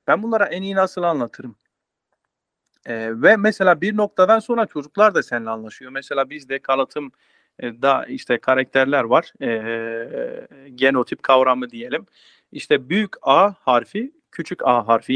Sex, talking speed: male, 135 wpm